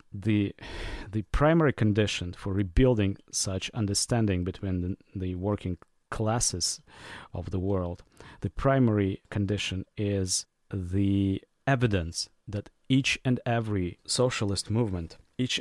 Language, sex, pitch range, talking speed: English, male, 95-115 Hz, 110 wpm